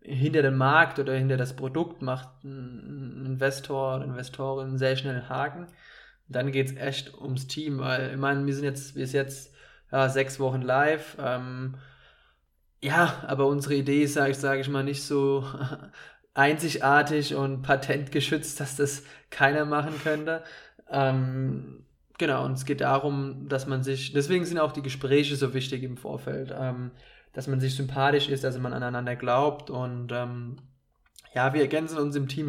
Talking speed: 175 wpm